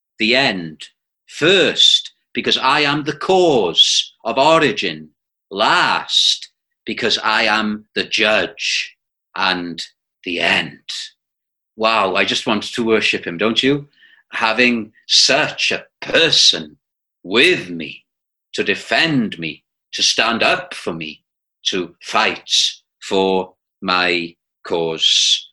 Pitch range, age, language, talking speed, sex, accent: 95-135 Hz, 40-59, English, 110 wpm, male, British